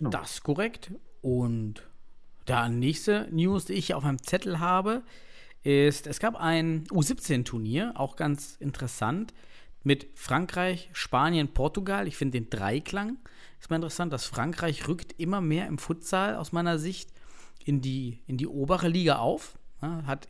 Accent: German